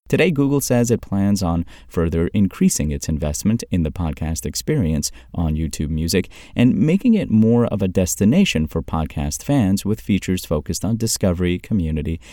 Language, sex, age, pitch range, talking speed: English, male, 30-49, 80-110 Hz, 160 wpm